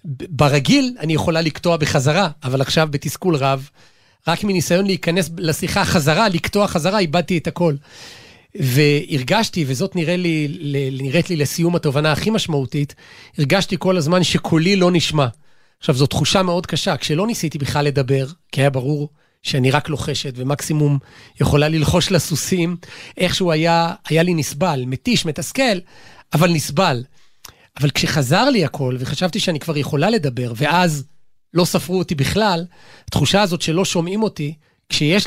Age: 40-59